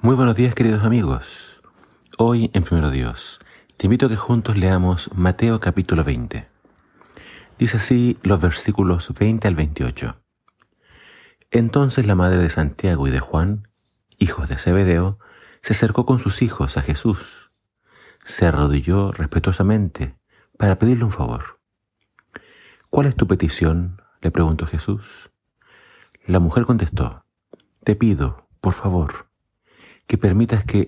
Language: Spanish